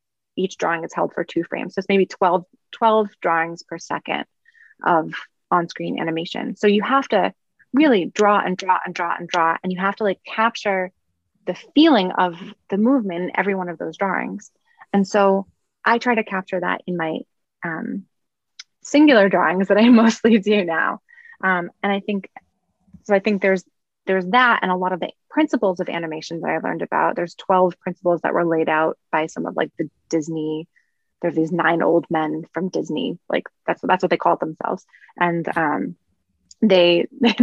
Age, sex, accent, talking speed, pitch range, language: 20-39, female, American, 185 wpm, 170-205 Hz, English